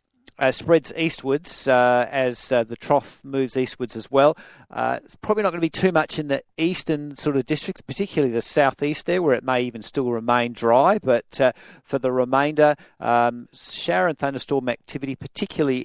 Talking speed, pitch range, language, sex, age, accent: 185 wpm, 120-145 Hz, English, male, 50-69, Australian